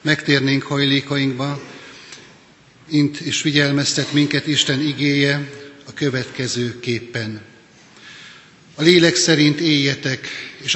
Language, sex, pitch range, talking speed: Hungarian, male, 130-145 Hz, 85 wpm